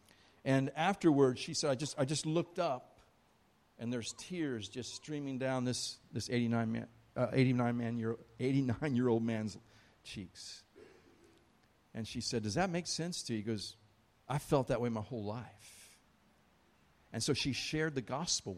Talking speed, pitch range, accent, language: 160 wpm, 105-140 Hz, American, English